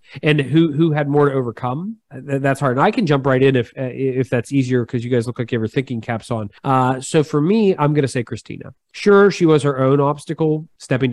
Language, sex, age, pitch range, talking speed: English, male, 30-49, 120-155 Hz, 250 wpm